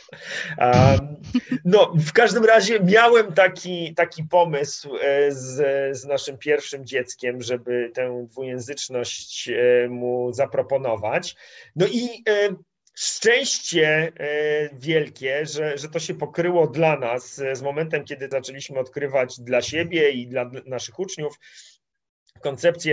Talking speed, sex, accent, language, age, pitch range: 105 wpm, male, native, Polish, 30-49, 125-165 Hz